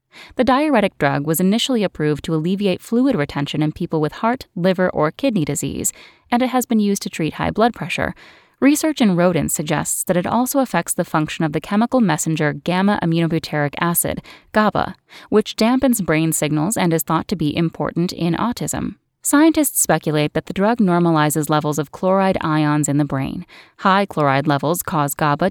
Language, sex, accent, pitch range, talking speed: English, female, American, 155-215 Hz, 175 wpm